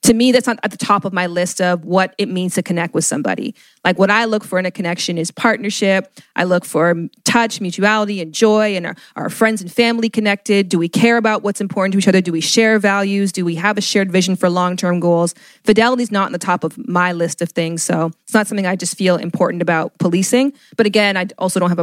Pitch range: 180-215 Hz